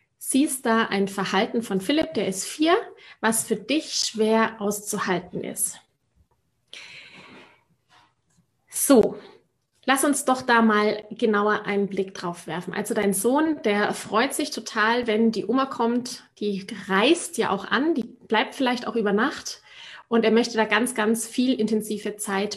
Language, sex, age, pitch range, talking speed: German, female, 30-49, 205-250 Hz, 150 wpm